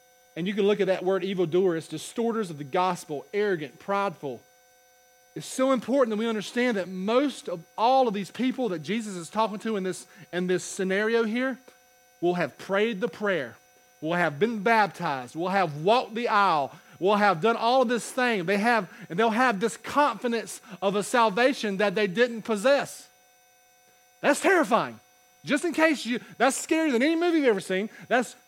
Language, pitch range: English, 200-265 Hz